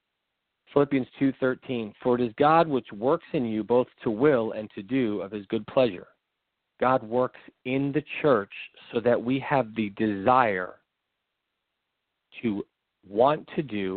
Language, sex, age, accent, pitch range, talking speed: English, male, 40-59, American, 105-125 Hz, 150 wpm